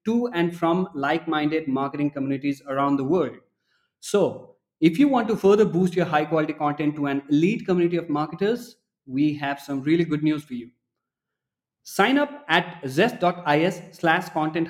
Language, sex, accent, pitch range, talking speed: English, male, Indian, 145-180 Hz, 160 wpm